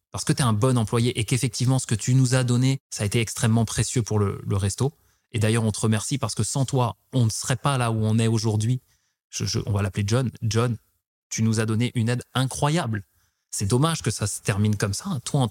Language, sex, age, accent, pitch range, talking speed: French, male, 20-39, French, 105-130 Hz, 255 wpm